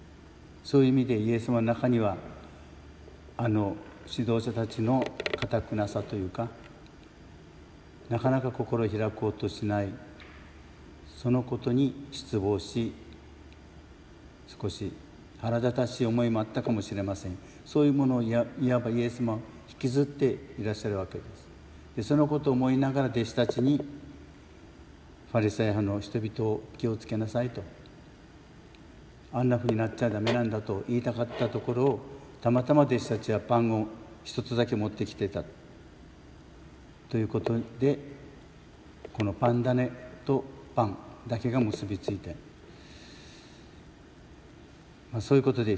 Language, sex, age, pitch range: Japanese, male, 60-79, 100-125 Hz